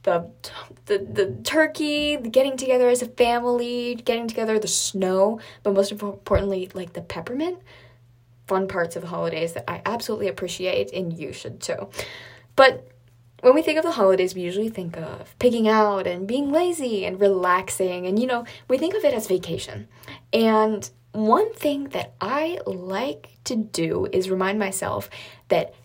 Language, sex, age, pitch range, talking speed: English, female, 10-29, 170-250 Hz, 165 wpm